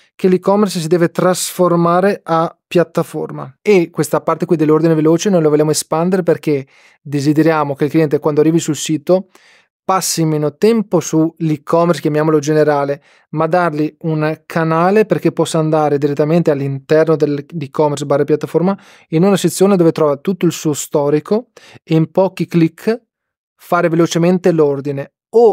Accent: native